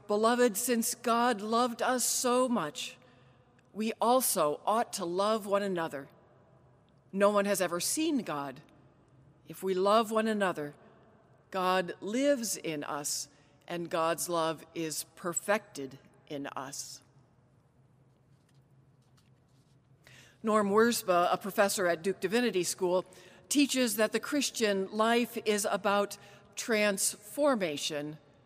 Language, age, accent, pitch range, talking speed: English, 50-69, American, 150-235 Hz, 110 wpm